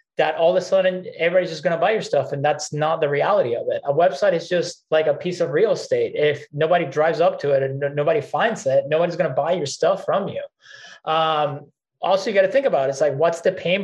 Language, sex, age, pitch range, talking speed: English, male, 20-39, 145-190 Hz, 260 wpm